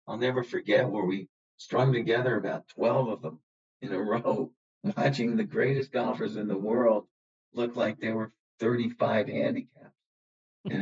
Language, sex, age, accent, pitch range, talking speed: English, male, 50-69, American, 105-130 Hz, 155 wpm